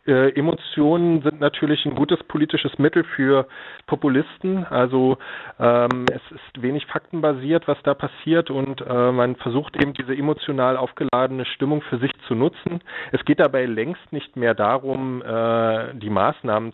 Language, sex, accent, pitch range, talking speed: German, male, German, 120-145 Hz, 150 wpm